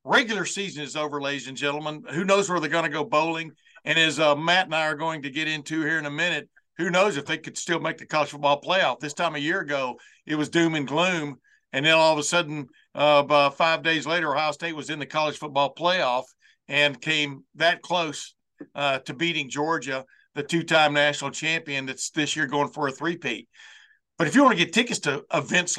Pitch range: 145-170 Hz